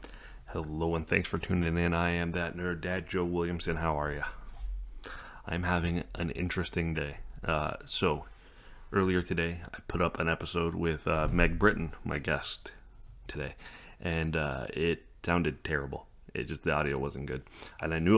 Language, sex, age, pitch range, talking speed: English, male, 30-49, 80-90 Hz, 170 wpm